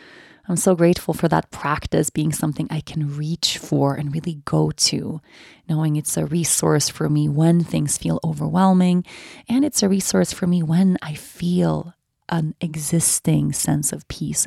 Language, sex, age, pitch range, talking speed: English, female, 30-49, 150-175 Hz, 165 wpm